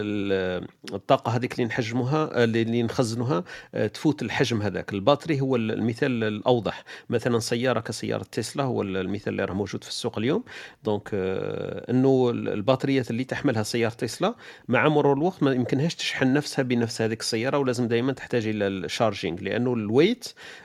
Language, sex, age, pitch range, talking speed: Arabic, male, 40-59, 110-135 Hz, 140 wpm